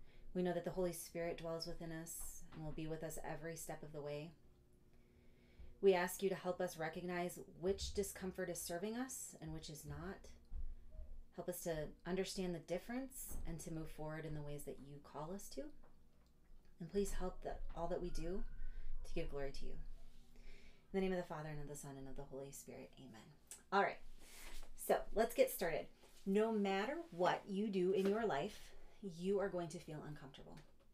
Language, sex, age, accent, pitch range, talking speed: English, female, 30-49, American, 150-195 Hz, 200 wpm